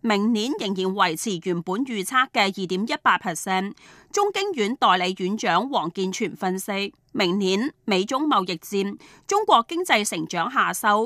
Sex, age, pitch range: female, 30-49, 190-260 Hz